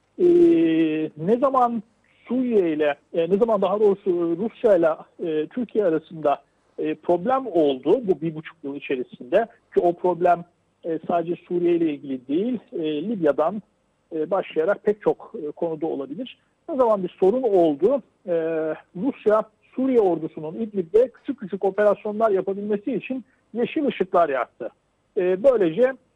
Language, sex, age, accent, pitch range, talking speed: Turkish, male, 50-69, native, 165-230 Hz, 140 wpm